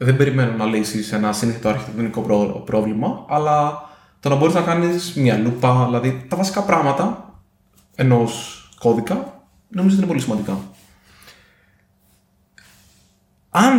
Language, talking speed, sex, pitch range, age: Greek, 115 wpm, male, 110-150 Hz, 20-39